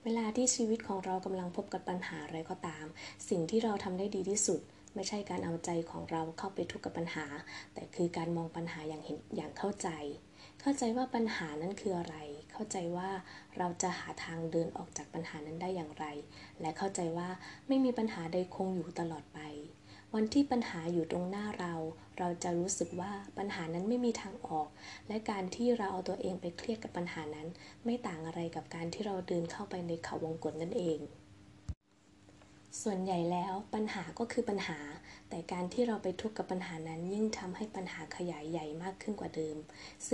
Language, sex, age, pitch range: Thai, female, 20-39, 160-200 Hz